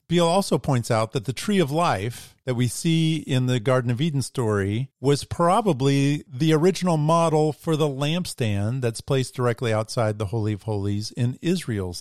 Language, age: English, 40-59